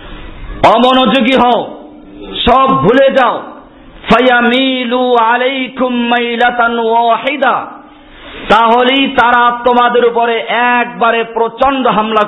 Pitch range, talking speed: 220-255 Hz, 65 wpm